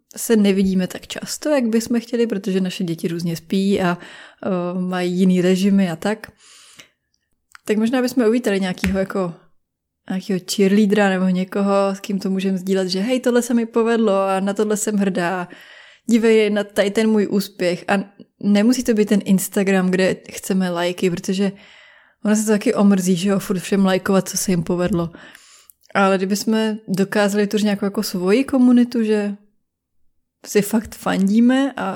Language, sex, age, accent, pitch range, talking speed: Czech, female, 20-39, native, 185-220 Hz, 165 wpm